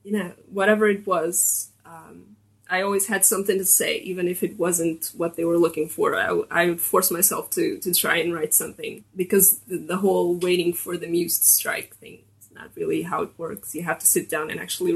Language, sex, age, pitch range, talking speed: English, female, 20-39, 160-195 Hz, 220 wpm